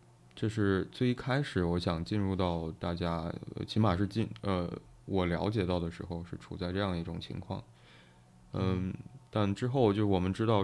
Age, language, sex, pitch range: 20-39, Chinese, male, 85-105 Hz